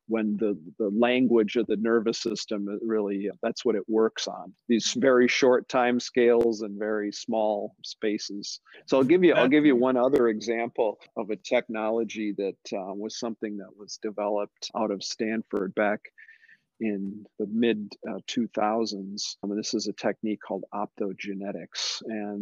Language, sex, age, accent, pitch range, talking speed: English, male, 40-59, American, 105-120 Hz, 165 wpm